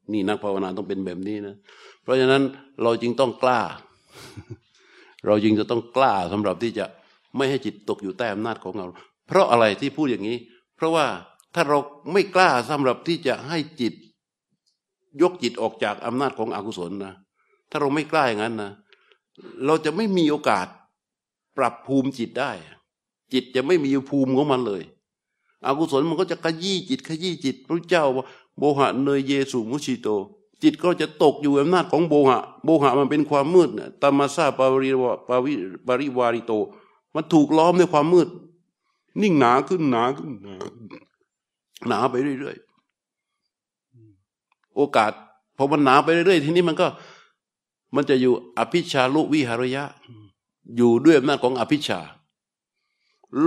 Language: Thai